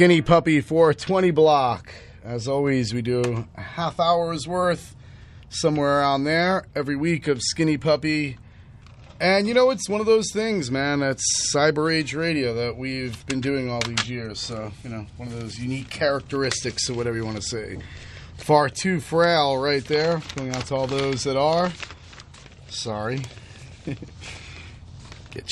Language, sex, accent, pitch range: English, male, American, 115-165 Hz